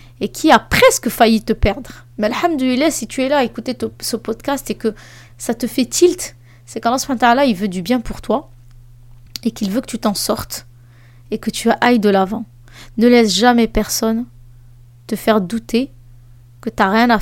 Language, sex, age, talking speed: French, female, 20-39, 200 wpm